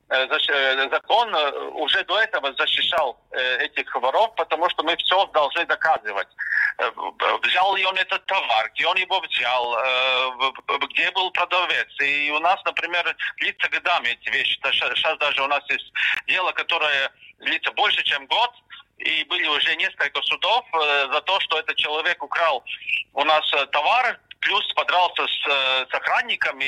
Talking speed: 140 wpm